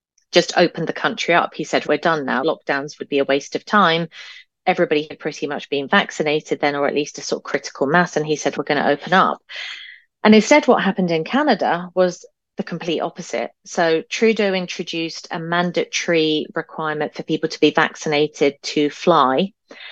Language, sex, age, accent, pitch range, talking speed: English, female, 30-49, British, 150-185 Hz, 190 wpm